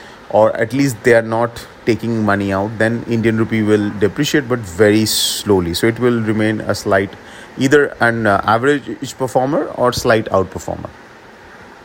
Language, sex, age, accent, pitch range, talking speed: English, male, 30-49, Indian, 110-130 Hz, 150 wpm